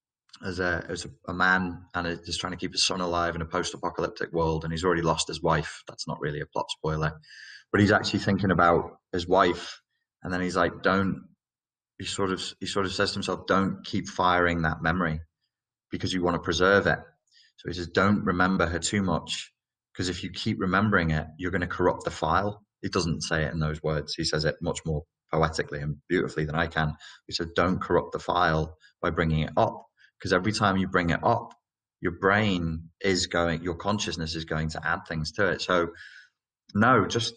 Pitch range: 85-105 Hz